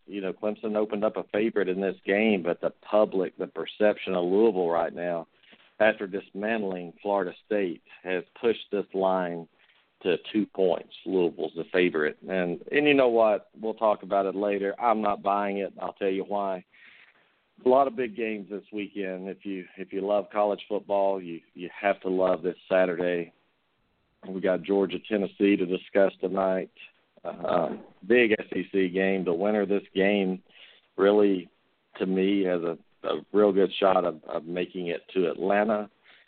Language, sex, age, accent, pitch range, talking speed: English, male, 50-69, American, 95-105 Hz, 170 wpm